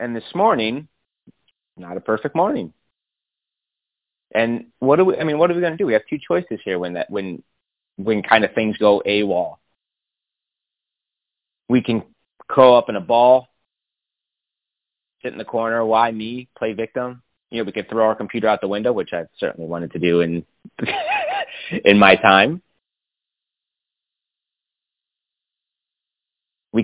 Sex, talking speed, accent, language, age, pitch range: male, 155 wpm, American, English, 30-49, 105-130 Hz